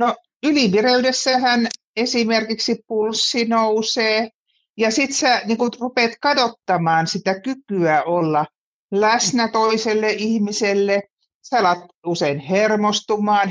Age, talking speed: 50-69, 95 wpm